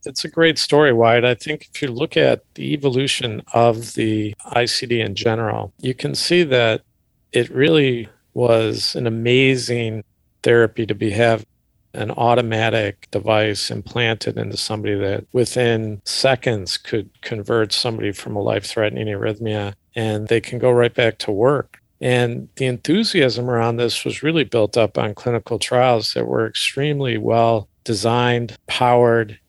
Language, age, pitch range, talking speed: English, 50-69, 110-125 Hz, 145 wpm